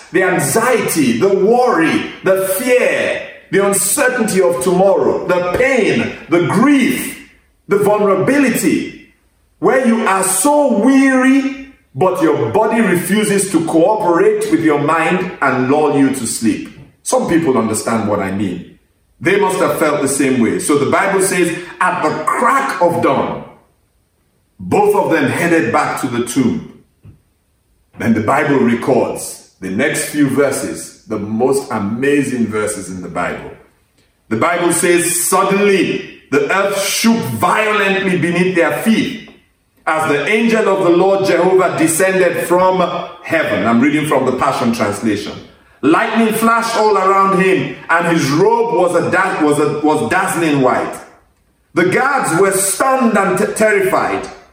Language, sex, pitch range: English, male, 165-225 Hz